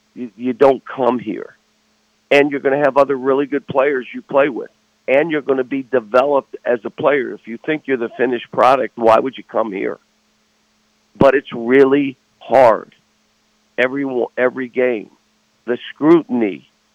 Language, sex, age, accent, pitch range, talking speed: English, male, 50-69, American, 120-140 Hz, 165 wpm